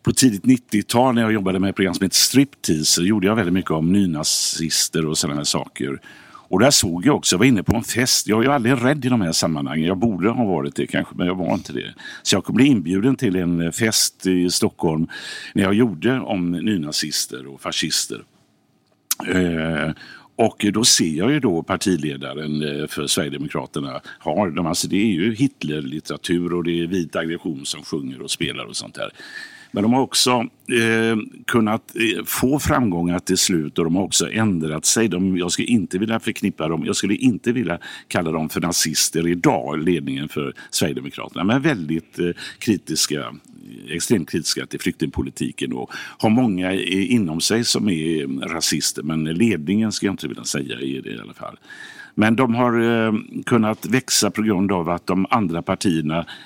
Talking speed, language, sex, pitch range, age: 180 wpm, English, male, 80-115 Hz, 60-79